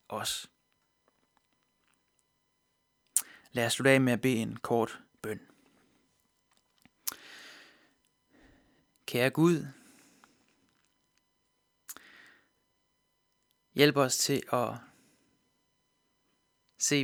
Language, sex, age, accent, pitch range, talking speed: Danish, male, 20-39, native, 120-140 Hz, 60 wpm